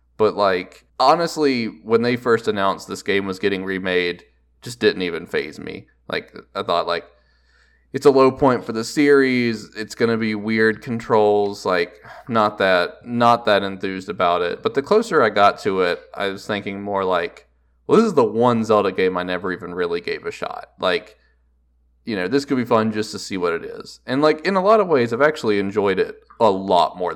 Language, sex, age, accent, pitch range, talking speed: English, male, 20-39, American, 90-130 Hz, 210 wpm